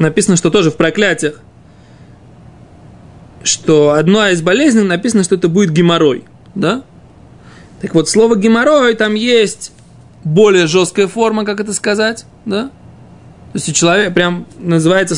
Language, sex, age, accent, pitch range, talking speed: Russian, male, 20-39, native, 165-220 Hz, 135 wpm